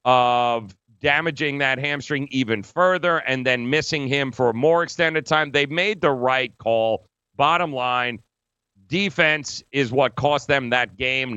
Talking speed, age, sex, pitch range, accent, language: 155 wpm, 40-59, male, 120-150 Hz, American, English